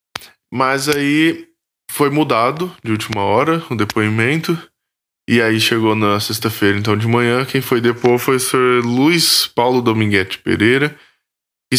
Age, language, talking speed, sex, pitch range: 10-29, Portuguese, 145 wpm, male, 105-130 Hz